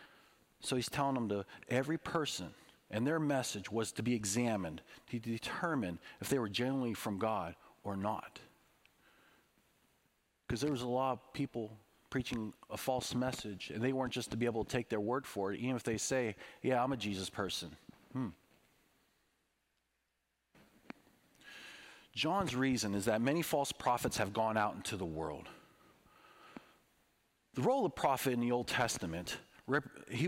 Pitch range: 105-135 Hz